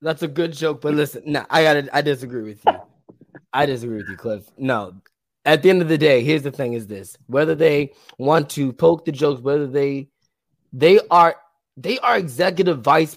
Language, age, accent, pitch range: English, 20-39, American, 130-175 Hz